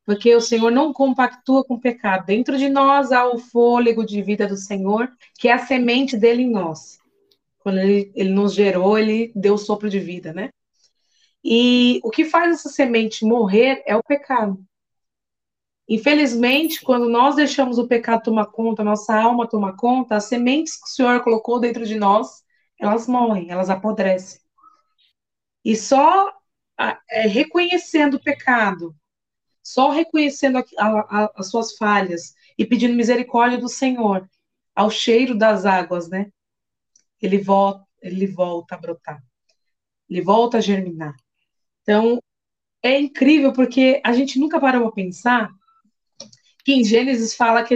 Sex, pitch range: female, 210-260 Hz